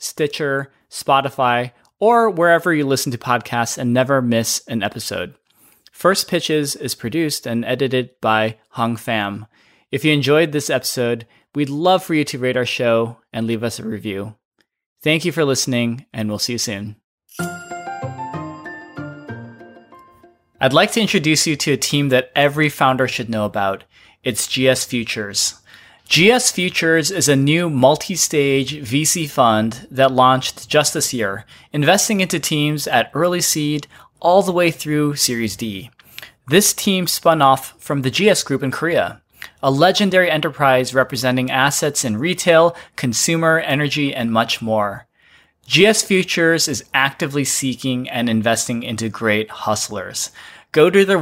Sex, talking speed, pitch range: male, 150 wpm, 120-160 Hz